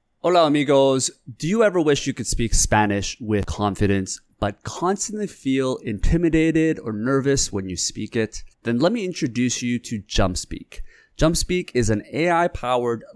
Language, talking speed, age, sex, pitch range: English, 150 wpm, 30-49, male, 100-145 Hz